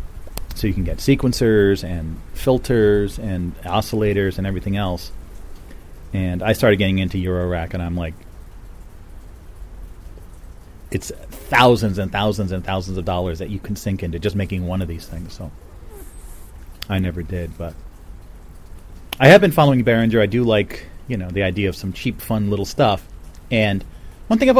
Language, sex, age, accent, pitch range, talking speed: English, male, 30-49, American, 85-115 Hz, 165 wpm